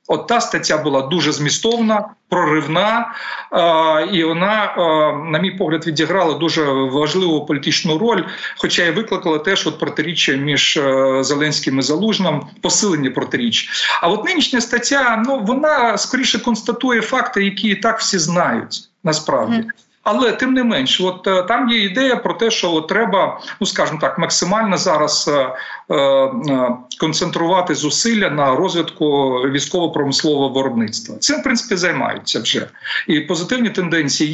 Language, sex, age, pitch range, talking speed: Ukrainian, male, 40-59, 155-230 Hz, 140 wpm